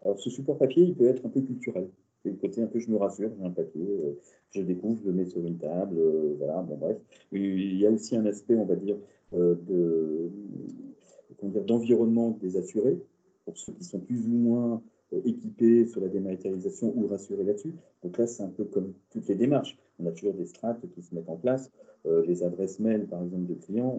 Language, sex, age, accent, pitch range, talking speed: French, male, 40-59, French, 95-130 Hz, 225 wpm